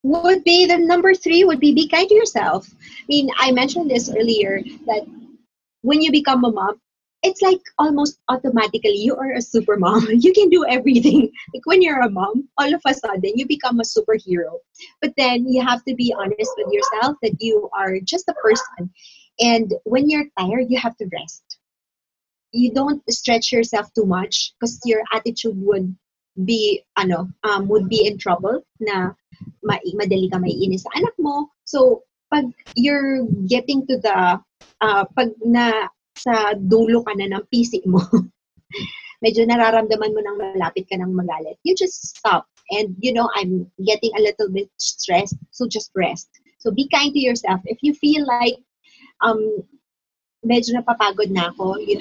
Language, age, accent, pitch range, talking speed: English, 30-49, Filipino, 205-285 Hz, 175 wpm